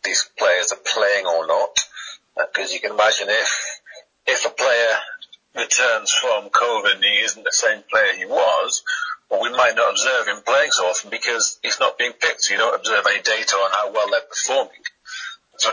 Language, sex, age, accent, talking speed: English, male, 30-49, British, 200 wpm